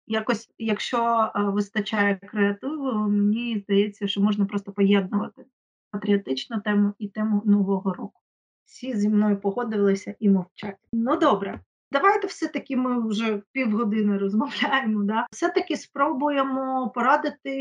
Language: Ukrainian